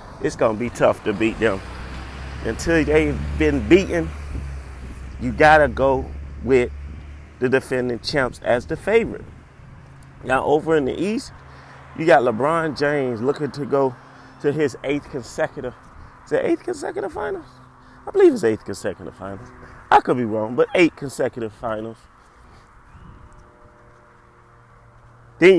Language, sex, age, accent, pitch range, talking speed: English, male, 30-49, American, 105-145 Hz, 135 wpm